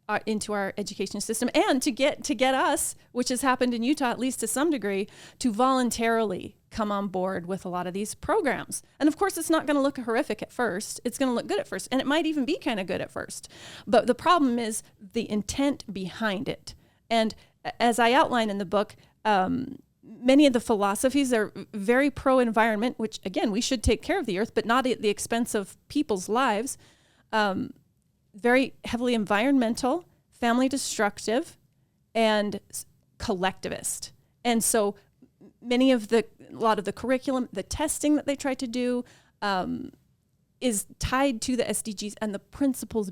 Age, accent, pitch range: 30-49, American, 205-255 Hz